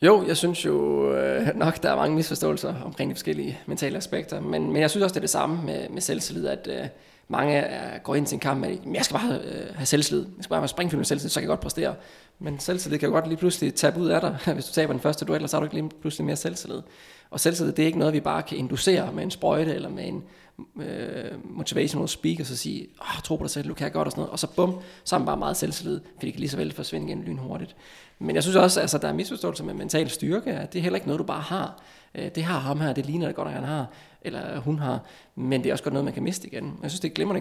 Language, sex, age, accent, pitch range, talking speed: Danish, male, 20-39, native, 140-180 Hz, 295 wpm